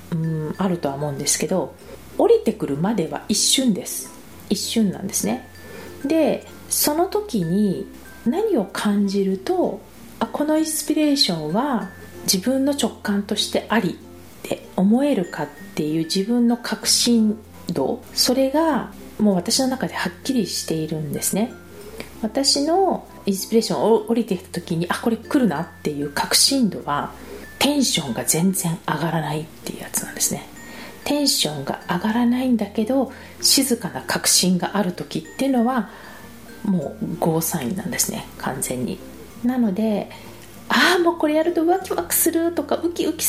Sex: female